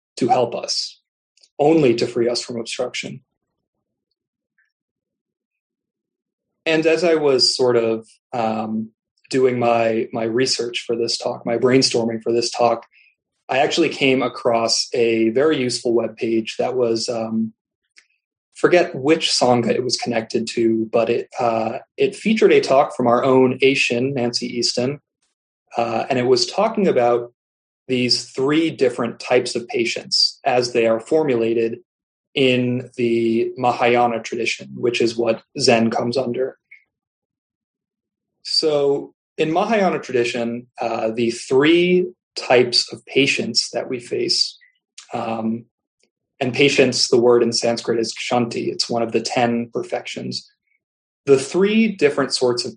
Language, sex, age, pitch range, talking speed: English, male, 30-49, 115-135 Hz, 135 wpm